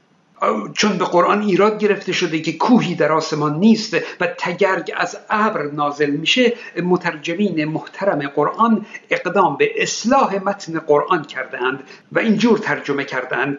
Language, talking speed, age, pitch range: Persian, 135 wpm, 50-69, 160-215 Hz